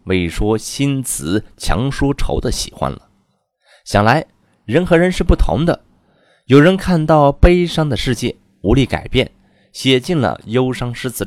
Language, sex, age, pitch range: Chinese, male, 30-49, 90-140 Hz